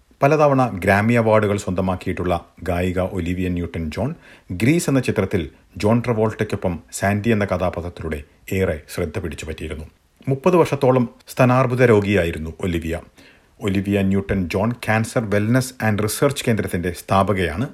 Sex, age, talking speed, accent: male, 50-69, 110 wpm, native